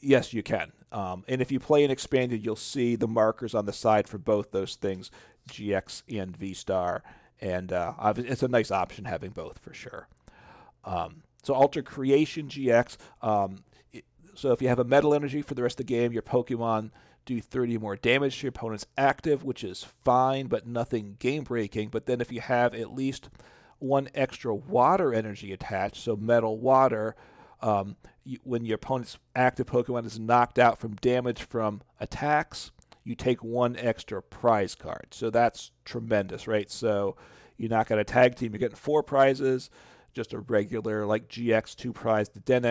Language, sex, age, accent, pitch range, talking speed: English, male, 40-59, American, 110-130 Hz, 180 wpm